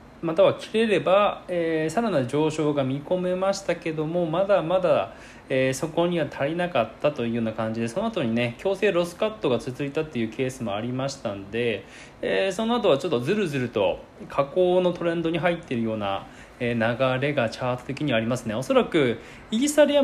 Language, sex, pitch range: Japanese, male, 120-180 Hz